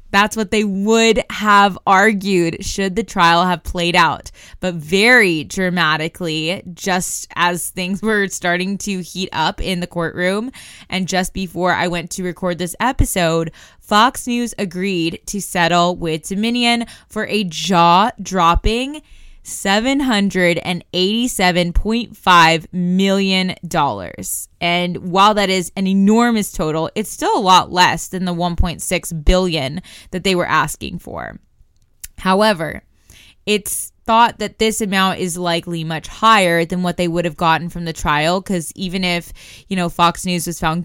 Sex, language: female, English